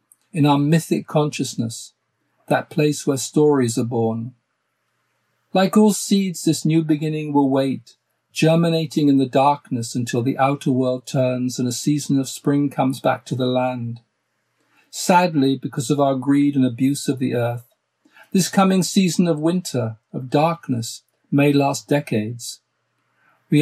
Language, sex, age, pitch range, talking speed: English, male, 50-69, 130-155 Hz, 145 wpm